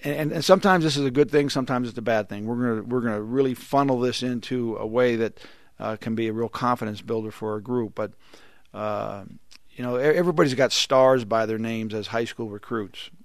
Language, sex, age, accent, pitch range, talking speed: English, male, 50-69, American, 110-130 Hz, 220 wpm